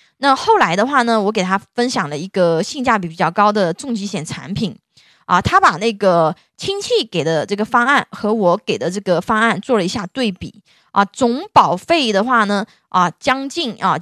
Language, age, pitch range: Chinese, 20-39, 190-255 Hz